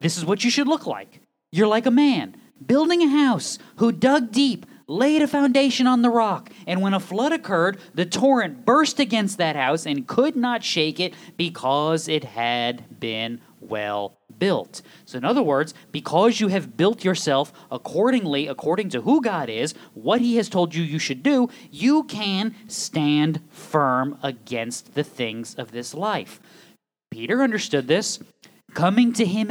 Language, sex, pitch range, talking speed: English, male, 165-270 Hz, 170 wpm